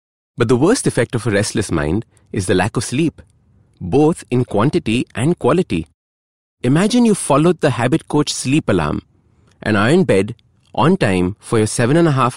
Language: English